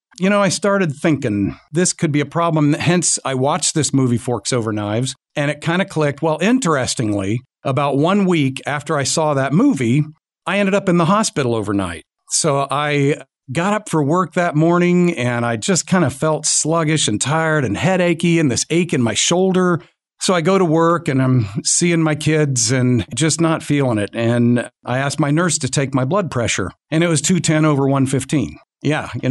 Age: 50-69